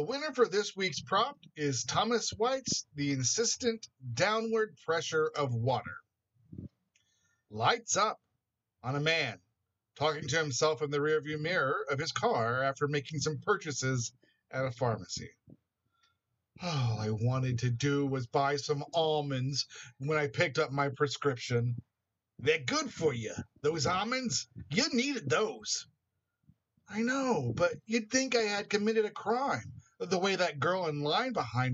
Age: 50-69